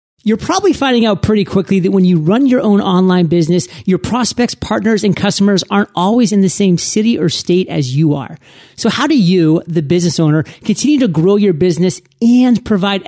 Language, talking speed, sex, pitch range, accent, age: English, 200 wpm, male, 170-215 Hz, American, 30-49